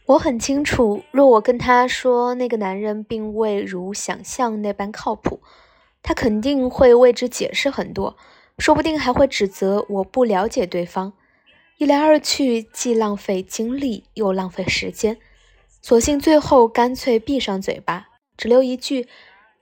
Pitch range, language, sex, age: 200-260 Hz, Chinese, female, 20-39